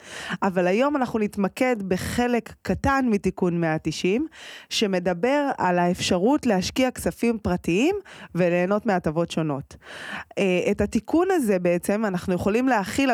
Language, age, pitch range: Hebrew, 20-39, 180-230 Hz